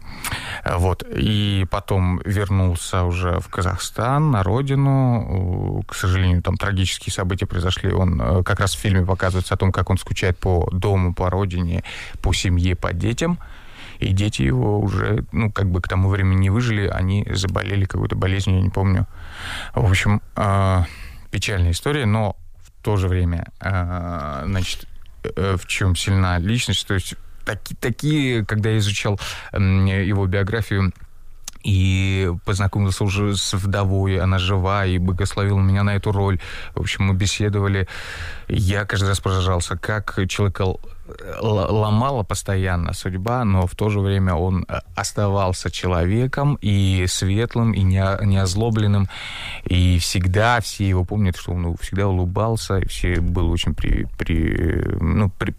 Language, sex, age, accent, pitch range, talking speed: Russian, male, 20-39, native, 90-105 Hz, 140 wpm